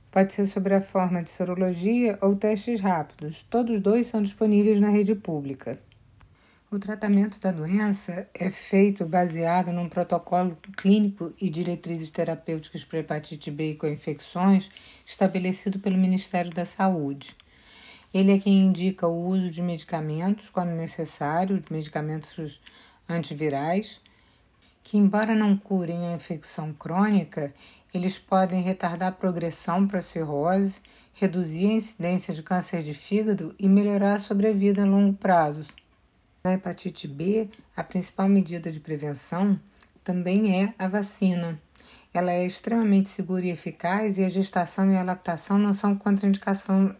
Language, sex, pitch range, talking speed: Portuguese, female, 170-200 Hz, 140 wpm